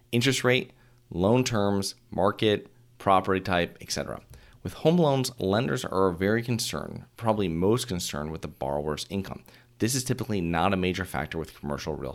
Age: 30-49